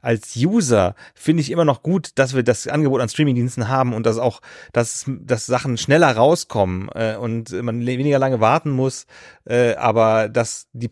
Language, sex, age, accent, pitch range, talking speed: German, male, 30-49, German, 110-135 Hz, 170 wpm